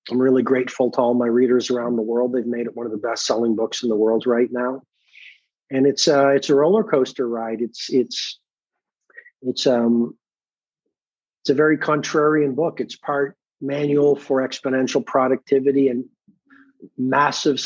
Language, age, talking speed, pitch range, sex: English, 40-59, 165 wpm, 125-145 Hz, male